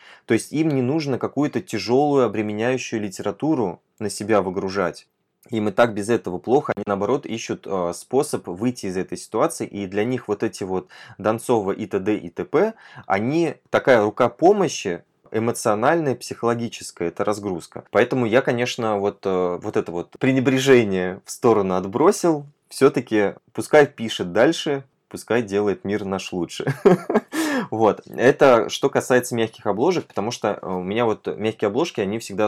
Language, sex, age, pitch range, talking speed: Russian, male, 20-39, 100-125 Hz, 150 wpm